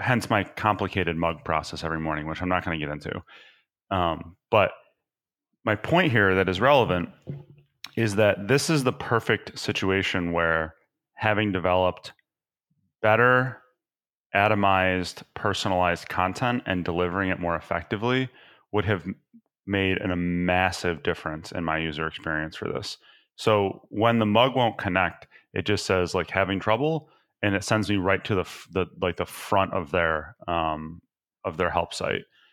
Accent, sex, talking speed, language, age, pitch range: American, male, 150 wpm, English, 30-49, 85-110 Hz